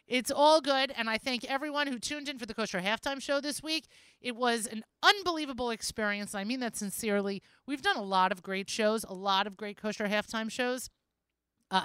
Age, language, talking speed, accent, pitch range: 30-49, English, 210 wpm, American, 205-270 Hz